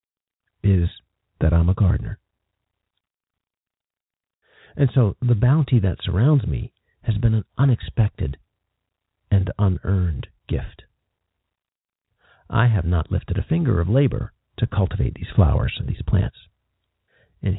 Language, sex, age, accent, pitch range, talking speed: English, male, 50-69, American, 90-110 Hz, 120 wpm